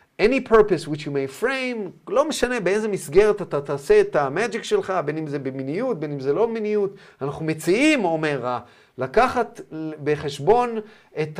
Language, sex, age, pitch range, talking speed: Hebrew, male, 40-59, 145-210 Hz, 160 wpm